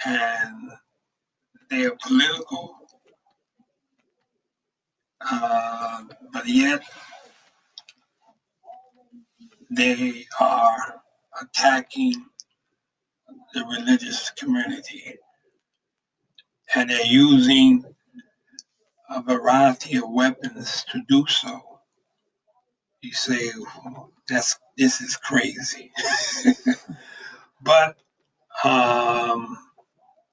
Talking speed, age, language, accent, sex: 65 wpm, 60-79, English, American, male